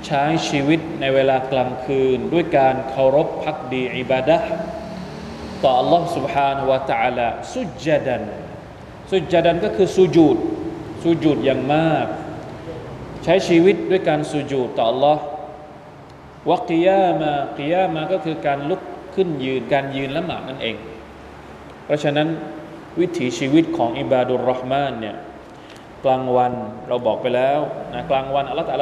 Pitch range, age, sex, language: 130-160 Hz, 20-39, male, Thai